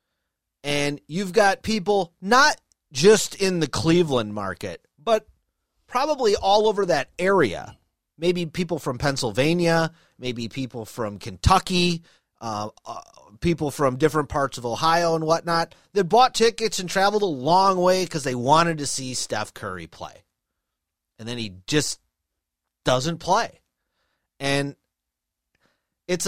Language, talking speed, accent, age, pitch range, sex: English, 130 wpm, American, 30-49, 125-180 Hz, male